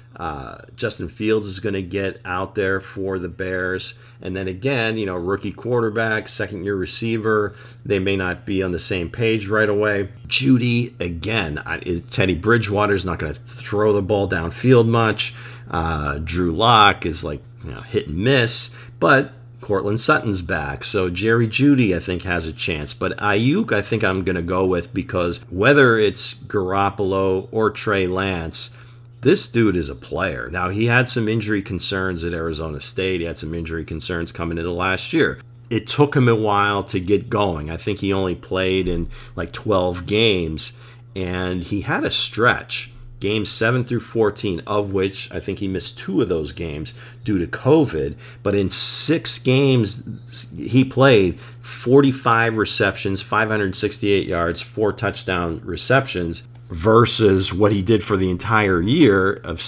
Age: 40-59